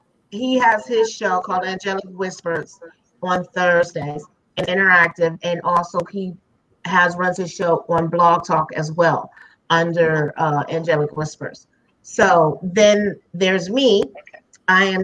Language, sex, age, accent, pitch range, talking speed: English, female, 30-49, American, 170-195 Hz, 130 wpm